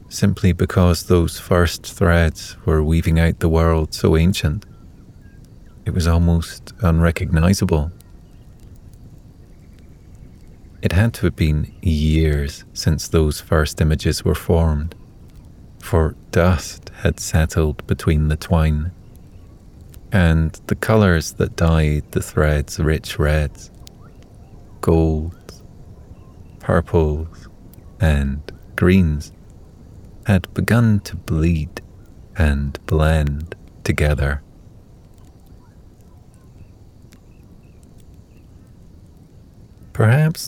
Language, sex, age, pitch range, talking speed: English, male, 30-49, 80-95 Hz, 85 wpm